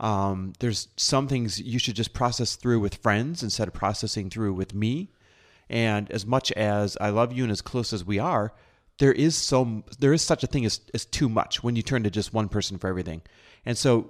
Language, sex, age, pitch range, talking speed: English, male, 30-49, 100-135 Hz, 225 wpm